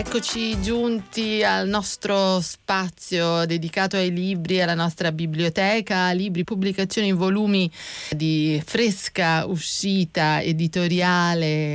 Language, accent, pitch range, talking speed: Italian, native, 160-190 Hz, 90 wpm